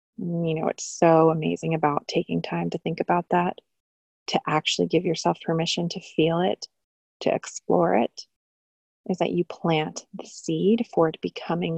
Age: 30-49